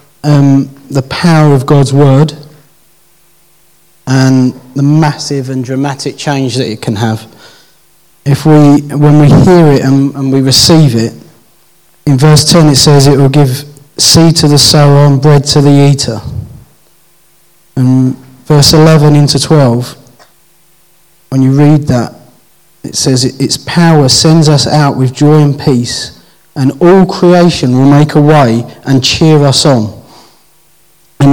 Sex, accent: male, British